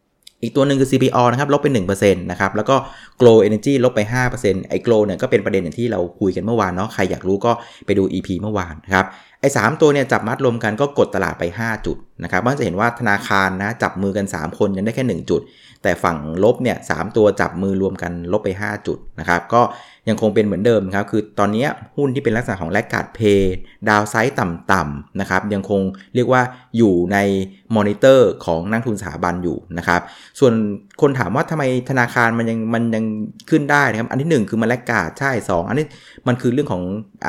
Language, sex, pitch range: Thai, male, 100-125 Hz